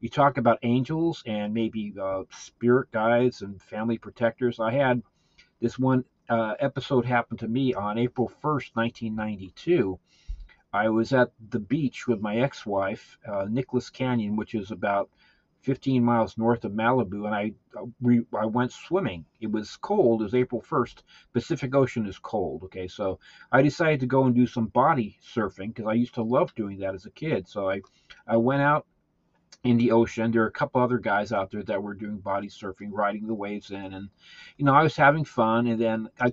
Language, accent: English, American